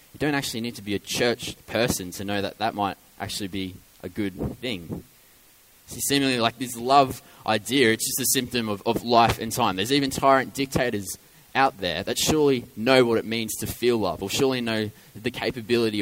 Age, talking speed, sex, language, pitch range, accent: 20-39, 200 wpm, male, English, 100-125 Hz, Australian